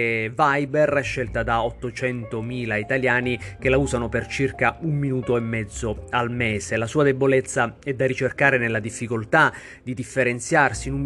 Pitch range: 115-140 Hz